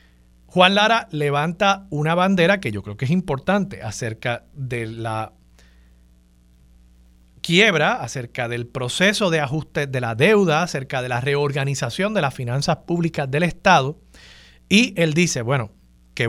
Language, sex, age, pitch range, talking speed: Spanish, male, 40-59, 115-155 Hz, 140 wpm